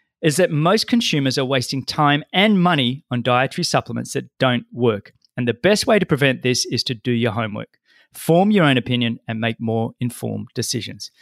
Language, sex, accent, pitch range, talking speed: English, male, Australian, 120-165 Hz, 195 wpm